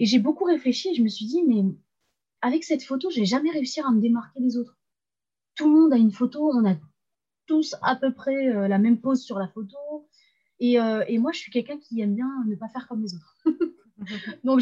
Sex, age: female, 20-39